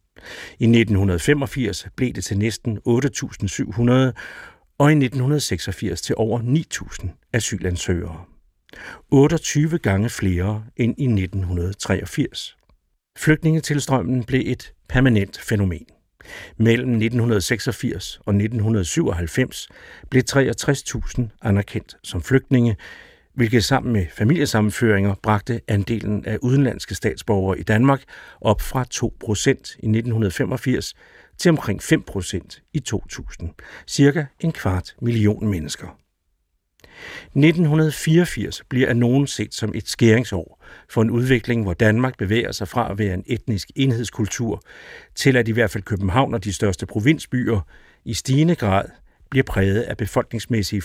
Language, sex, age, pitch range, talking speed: Danish, male, 60-79, 100-130 Hz, 115 wpm